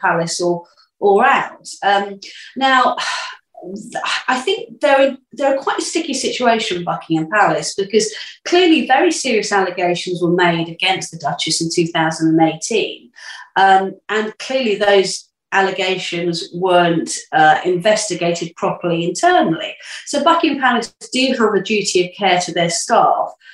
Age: 40-59